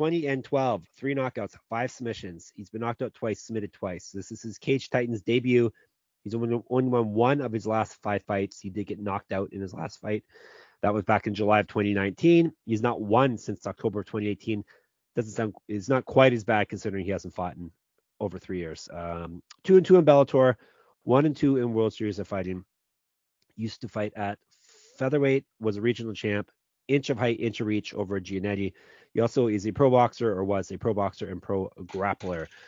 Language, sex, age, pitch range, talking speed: English, male, 30-49, 100-130 Hz, 200 wpm